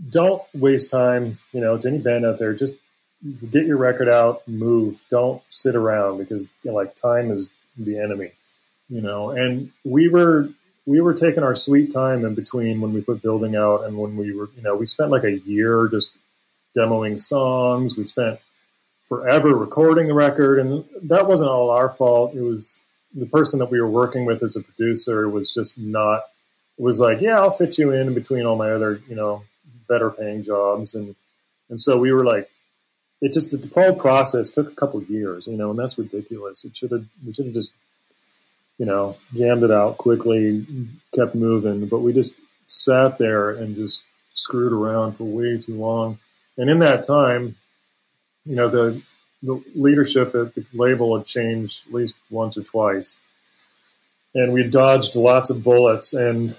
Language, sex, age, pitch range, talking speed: English, male, 30-49, 110-130 Hz, 190 wpm